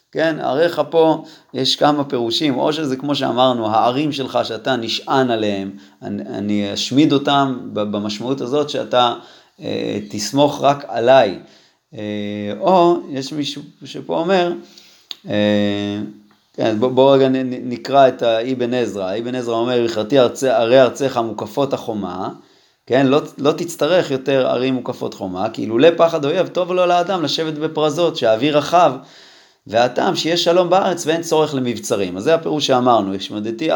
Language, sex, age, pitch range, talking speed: Hebrew, male, 30-49, 110-150 Hz, 145 wpm